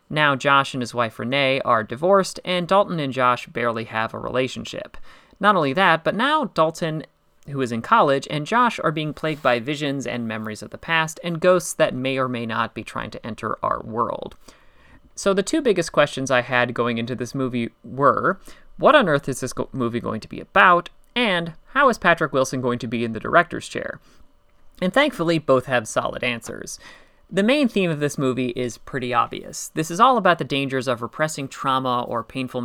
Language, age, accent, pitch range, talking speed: English, 30-49, American, 125-175 Hz, 205 wpm